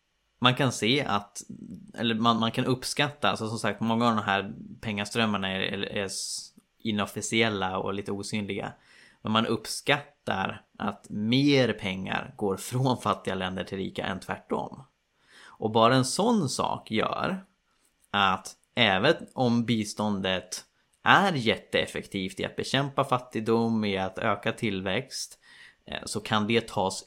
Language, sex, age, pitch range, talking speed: Swedish, male, 20-39, 95-120 Hz, 140 wpm